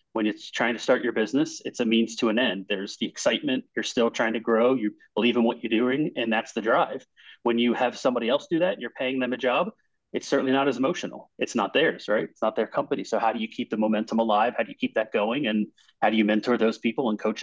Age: 30-49